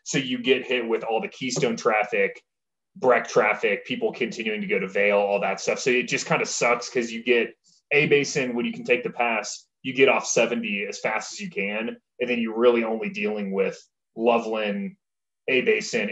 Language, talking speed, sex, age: English, 210 wpm, male, 30-49